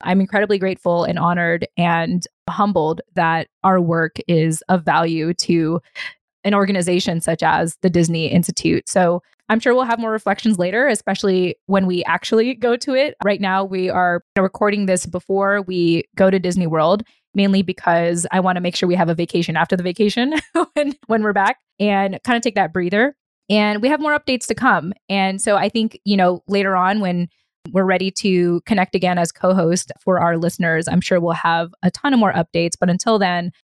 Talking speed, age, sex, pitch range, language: 200 wpm, 20-39, female, 175-210 Hz, English